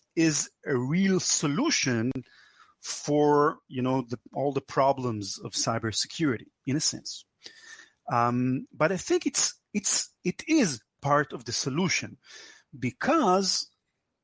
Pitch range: 115-150 Hz